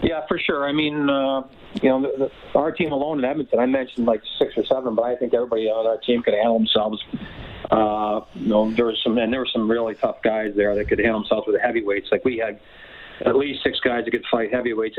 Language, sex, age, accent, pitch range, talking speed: English, male, 40-59, American, 110-125 Hz, 250 wpm